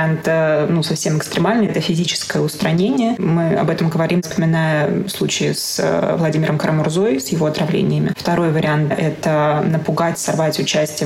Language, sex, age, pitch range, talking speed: Russian, female, 20-39, 160-195 Hz, 135 wpm